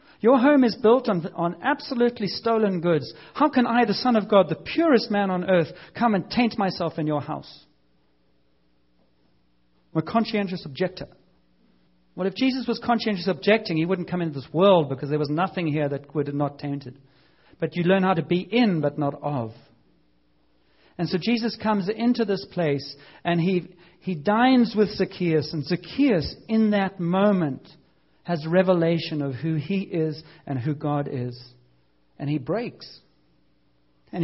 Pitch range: 135-210 Hz